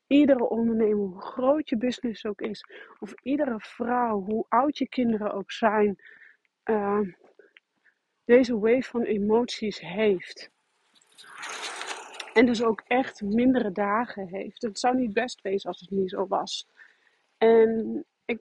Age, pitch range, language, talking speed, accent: 40-59, 210-255 Hz, Dutch, 135 wpm, Dutch